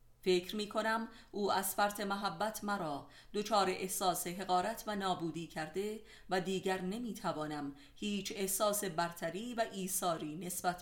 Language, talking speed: Persian, 130 wpm